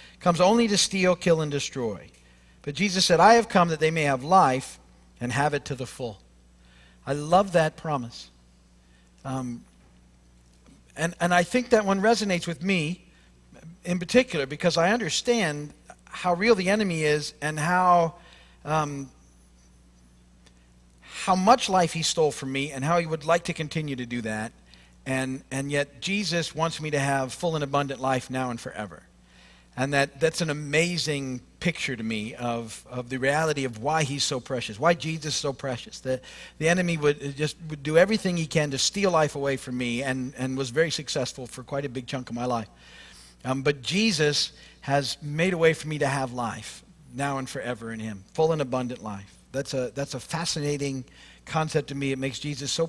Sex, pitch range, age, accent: male, 120-165 Hz, 50-69, American